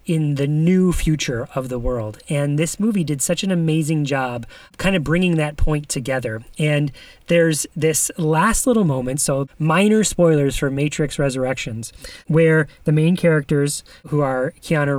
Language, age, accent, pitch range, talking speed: English, 30-49, American, 140-170 Hz, 160 wpm